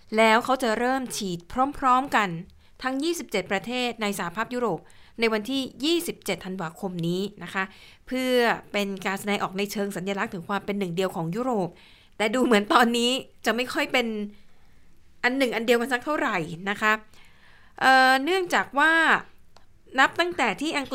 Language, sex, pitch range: Thai, female, 195-250 Hz